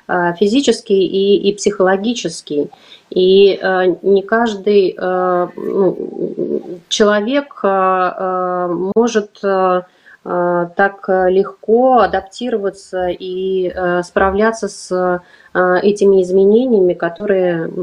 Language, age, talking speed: Russian, 30-49, 85 wpm